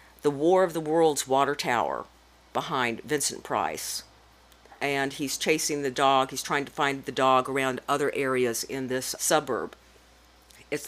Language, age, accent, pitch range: English, 50-69, American, 130-155 Hz